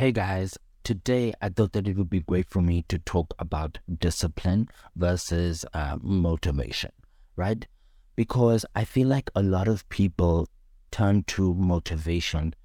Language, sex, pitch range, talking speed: English, male, 80-100 Hz, 145 wpm